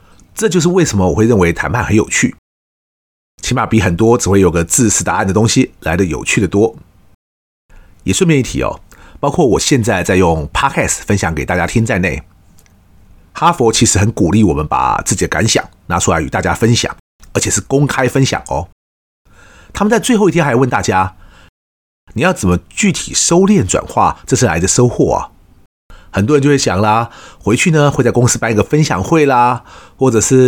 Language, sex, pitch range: Chinese, male, 90-130 Hz